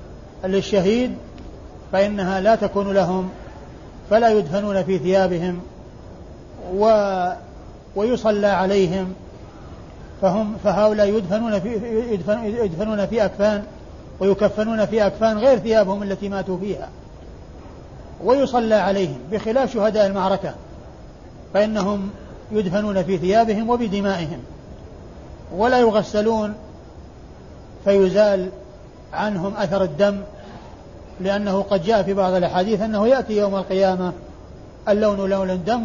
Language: Arabic